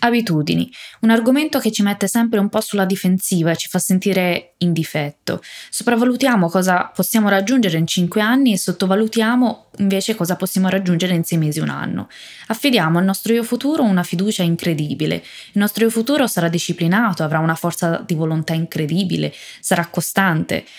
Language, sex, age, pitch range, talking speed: Italian, female, 20-39, 170-215 Hz, 165 wpm